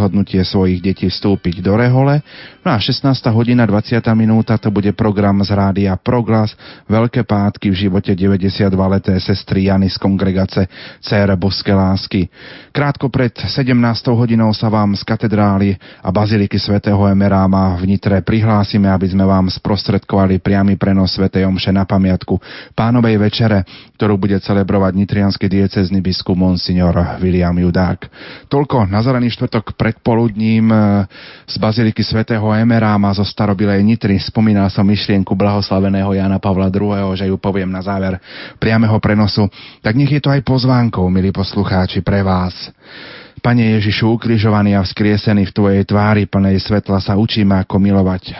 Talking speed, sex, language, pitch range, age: 145 wpm, male, Slovak, 95-110 Hz, 30-49